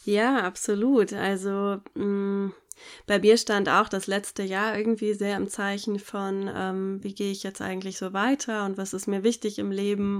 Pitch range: 195-215 Hz